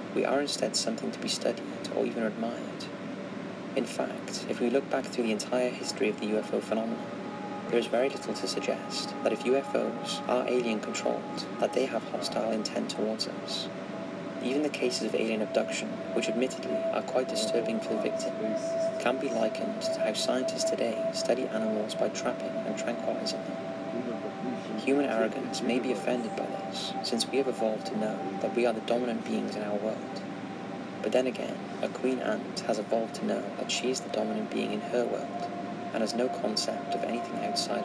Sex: male